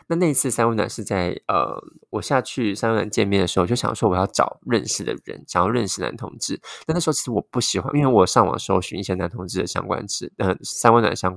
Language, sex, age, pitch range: Chinese, male, 20-39, 95-135 Hz